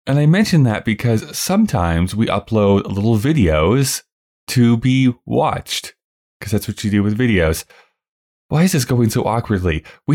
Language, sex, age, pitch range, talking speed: English, male, 20-39, 90-130 Hz, 160 wpm